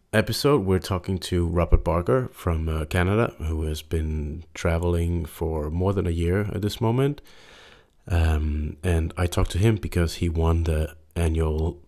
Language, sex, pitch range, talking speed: English, male, 80-85 Hz, 160 wpm